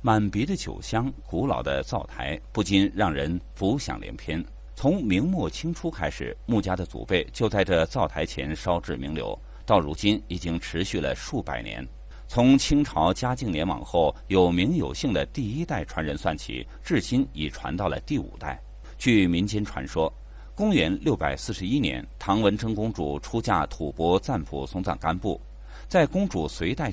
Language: Chinese